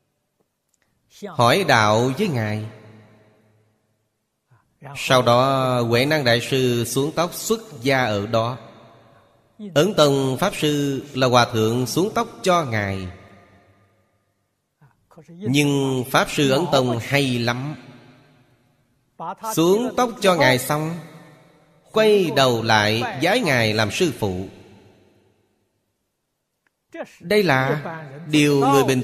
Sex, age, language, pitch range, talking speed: male, 30-49, Vietnamese, 110-145 Hz, 105 wpm